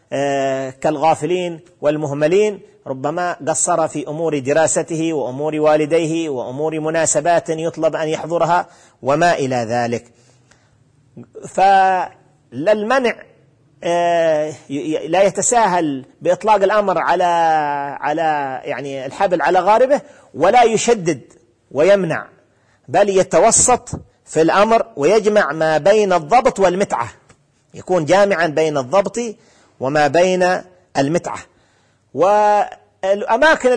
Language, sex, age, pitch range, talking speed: Arabic, male, 40-59, 150-195 Hz, 90 wpm